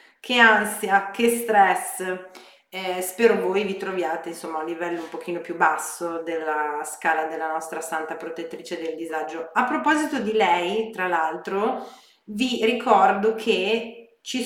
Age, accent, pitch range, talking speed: 30-49, native, 175-225 Hz, 140 wpm